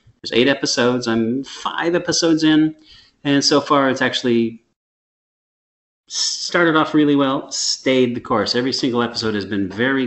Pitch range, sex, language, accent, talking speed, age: 110-125 Hz, male, English, American, 150 wpm, 30-49